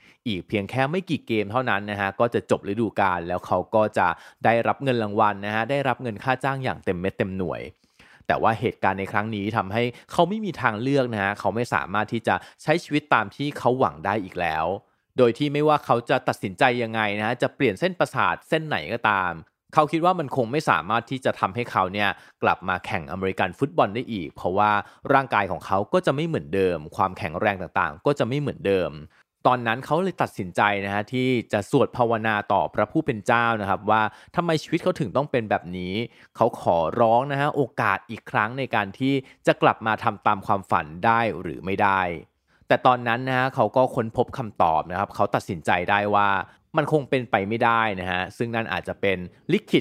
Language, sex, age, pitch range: Thai, male, 30-49, 100-135 Hz